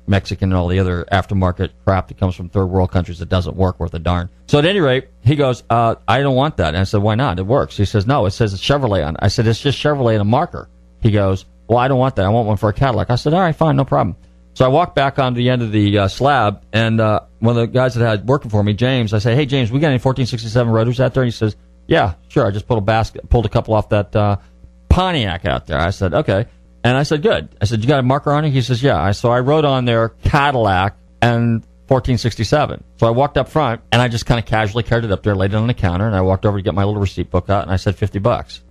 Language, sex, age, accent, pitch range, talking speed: English, male, 40-59, American, 95-130 Hz, 295 wpm